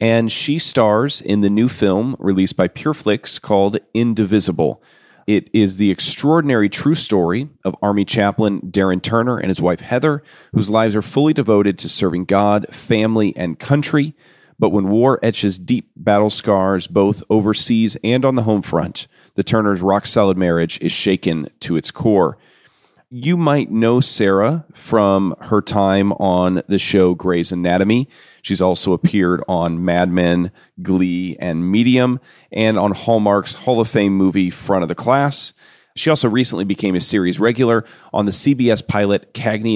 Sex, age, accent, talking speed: male, 40-59, American, 160 wpm